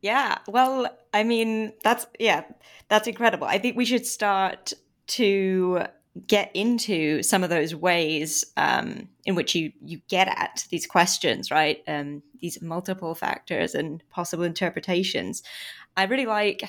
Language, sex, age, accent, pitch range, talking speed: English, female, 20-39, British, 175-220 Hz, 145 wpm